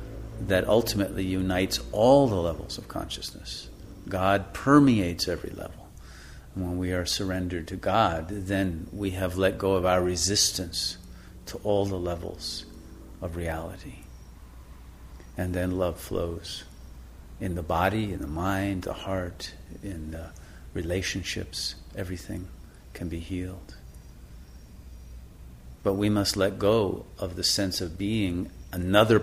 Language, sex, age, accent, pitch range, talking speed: English, male, 50-69, American, 80-95 Hz, 130 wpm